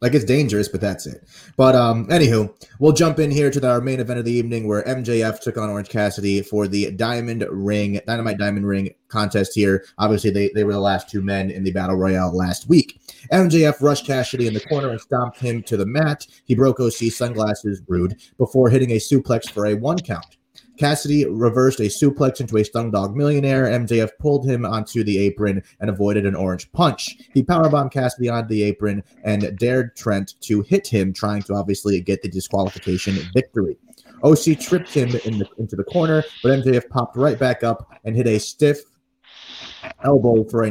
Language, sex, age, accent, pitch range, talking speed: English, male, 30-49, American, 105-130 Hz, 200 wpm